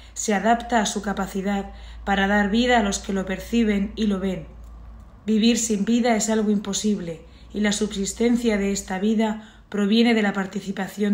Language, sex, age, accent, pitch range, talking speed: Spanish, female, 20-39, Spanish, 195-225 Hz, 170 wpm